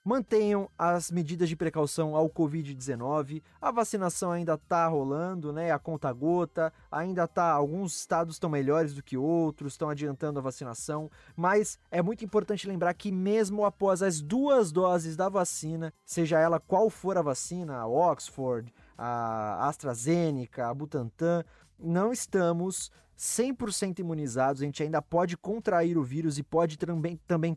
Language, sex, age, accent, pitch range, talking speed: Portuguese, male, 20-39, Brazilian, 145-180 Hz, 145 wpm